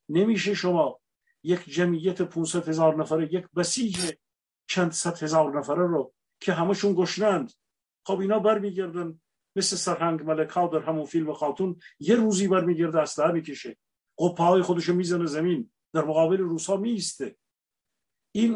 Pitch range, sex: 160-195 Hz, male